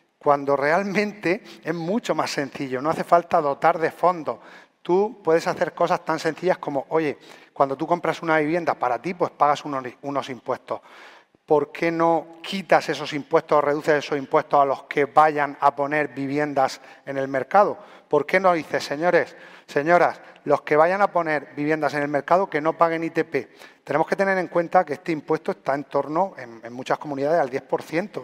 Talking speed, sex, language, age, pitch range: 185 wpm, male, Spanish, 40-59, 140-175 Hz